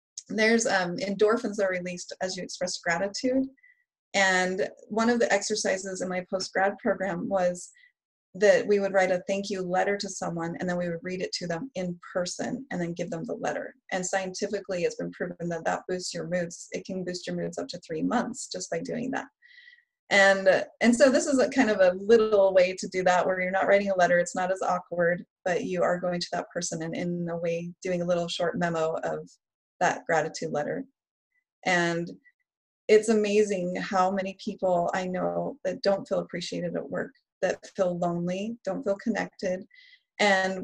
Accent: American